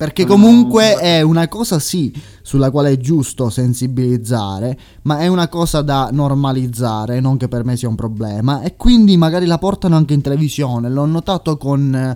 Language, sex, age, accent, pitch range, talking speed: Italian, male, 20-39, native, 115-150 Hz, 175 wpm